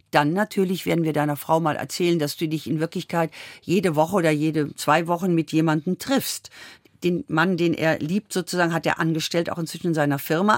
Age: 50-69